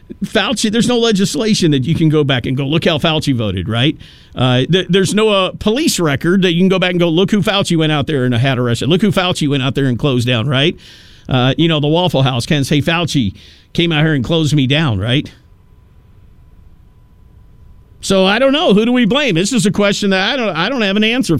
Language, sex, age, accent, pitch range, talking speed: English, male, 50-69, American, 140-210 Hz, 240 wpm